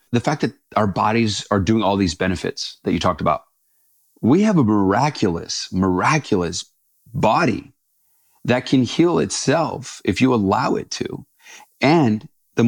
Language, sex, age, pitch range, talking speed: English, male, 30-49, 100-130 Hz, 145 wpm